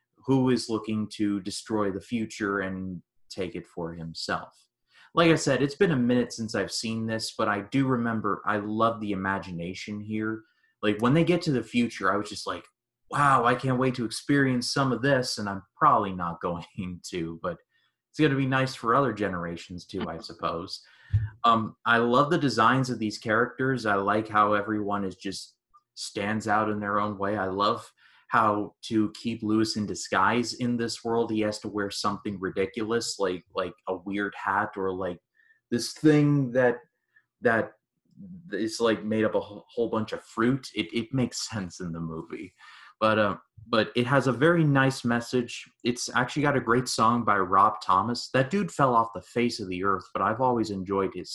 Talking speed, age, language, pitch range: 195 wpm, 30-49, English, 100-130 Hz